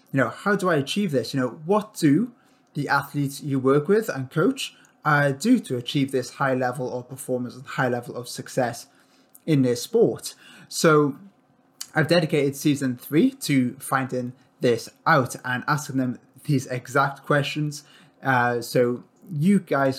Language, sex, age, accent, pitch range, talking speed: English, male, 20-39, British, 125-155 Hz, 160 wpm